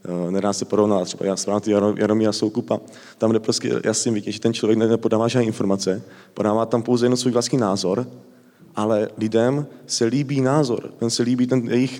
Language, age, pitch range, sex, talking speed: Czech, 20-39, 105-125 Hz, male, 185 wpm